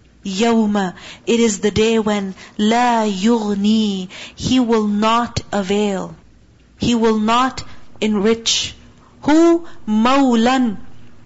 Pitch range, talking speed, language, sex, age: 210-265 Hz, 95 wpm, English, female, 40-59